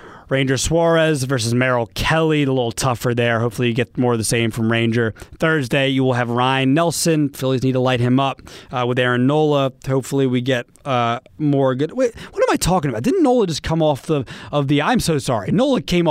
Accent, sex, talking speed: American, male, 220 wpm